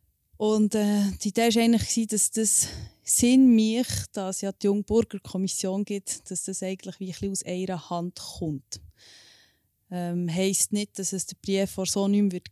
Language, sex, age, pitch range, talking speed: German, female, 20-39, 185-210 Hz, 175 wpm